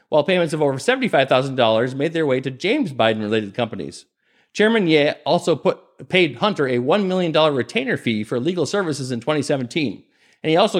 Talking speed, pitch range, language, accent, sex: 160 wpm, 140-190 Hz, English, American, male